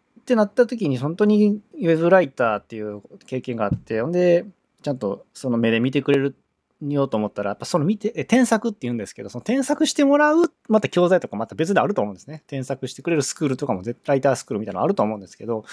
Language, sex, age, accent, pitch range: Japanese, male, 20-39, native, 115-180 Hz